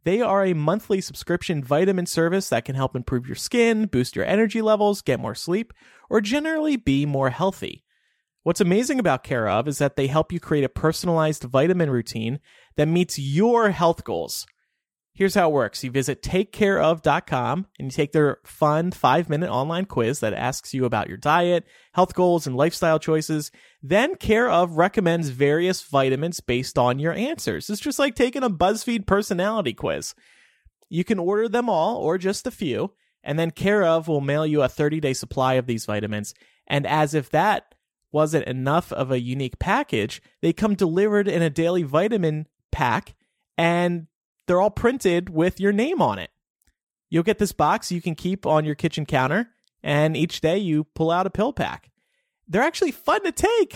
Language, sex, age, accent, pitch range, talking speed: English, male, 30-49, American, 145-200 Hz, 180 wpm